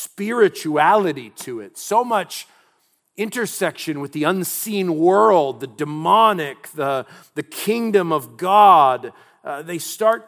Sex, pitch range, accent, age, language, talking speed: male, 140-180 Hz, American, 40-59, English, 115 wpm